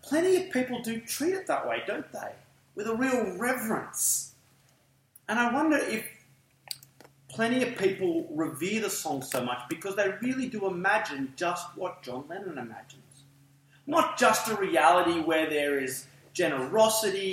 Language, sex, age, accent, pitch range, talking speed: English, male, 30-49, Australian, 135-210 Hz, 150 wpm